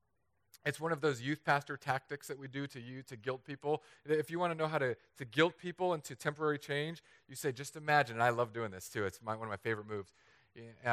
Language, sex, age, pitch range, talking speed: English, male, 40-59, 115-155 Hz, 260 wpm